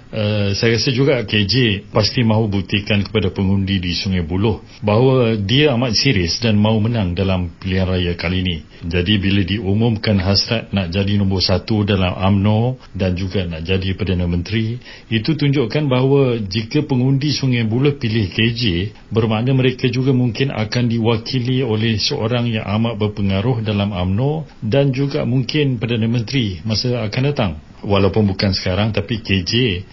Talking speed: 150 wpm